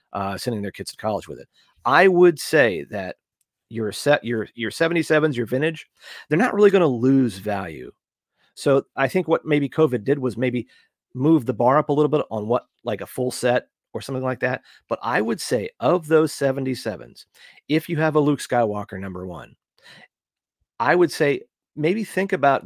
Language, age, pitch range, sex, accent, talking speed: English, 40-59, 115-150 Hz, male, American, 195 wpm